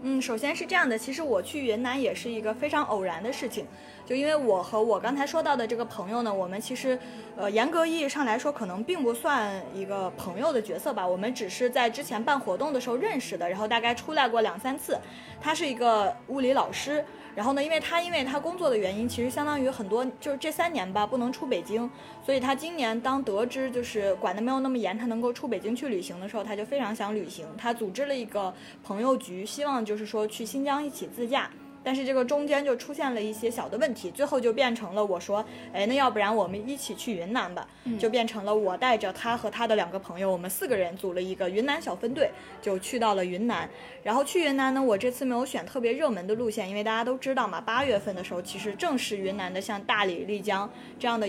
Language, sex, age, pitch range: Chinese, female, 20-39, 210-270 Hz